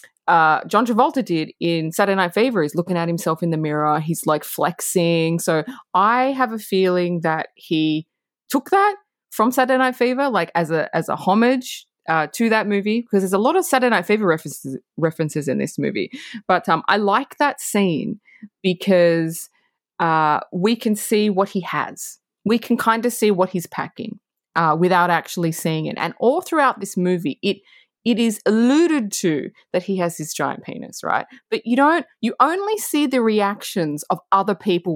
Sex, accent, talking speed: female, Australian, 185 wpm